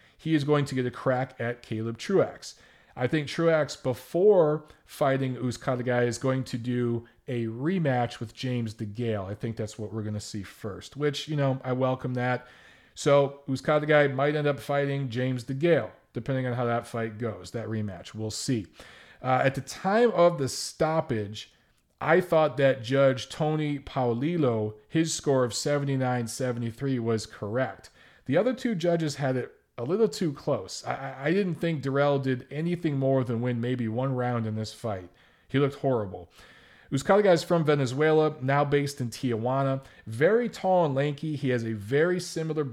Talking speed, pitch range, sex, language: 175 wpm, 120-145 Hz, male, English